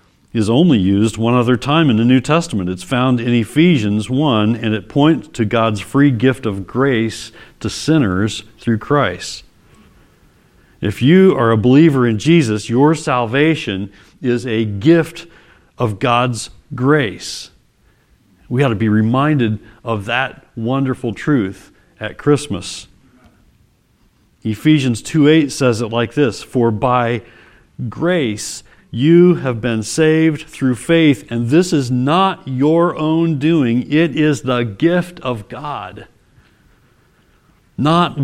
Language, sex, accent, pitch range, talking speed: English, male, American, 115-155 Hz, 130 wpm